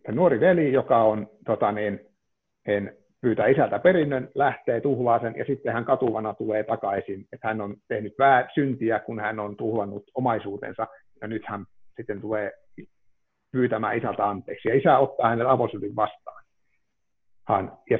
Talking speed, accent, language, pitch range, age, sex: 145 wpm, native, Finnish, 105-140 Hz, 60-79, male